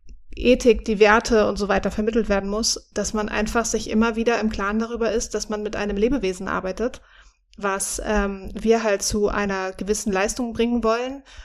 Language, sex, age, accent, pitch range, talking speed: German, female, 30-49, German, 210-245 Hz, 185 wpm